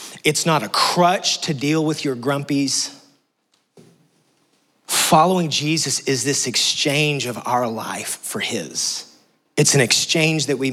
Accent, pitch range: American, 115-140 Hz